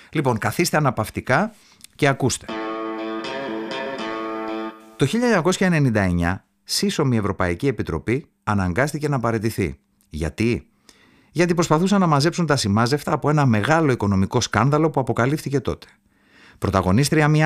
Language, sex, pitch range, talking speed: Greek, male, 105-150 Hz, 105 wpm